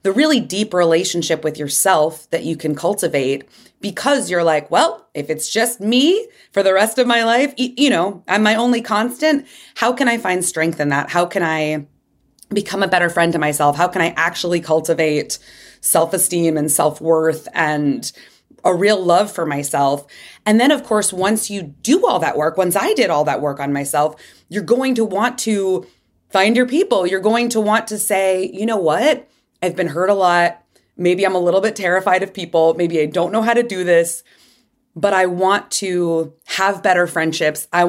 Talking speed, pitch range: 200 wpm, 165-210 Hz